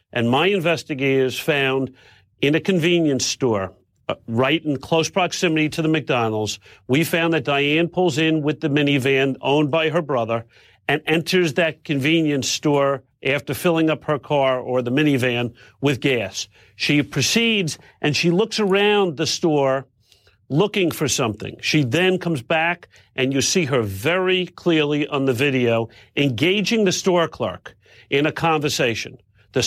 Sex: male